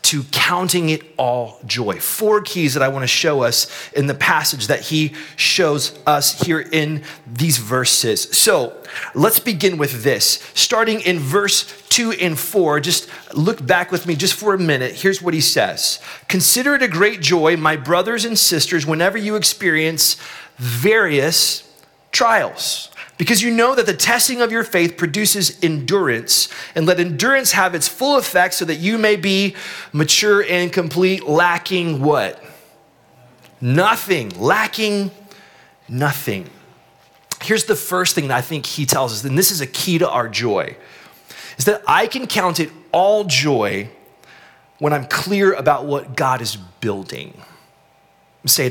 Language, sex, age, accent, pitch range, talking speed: English, male, 30-49, American, 145-200 Hz, 160 wpm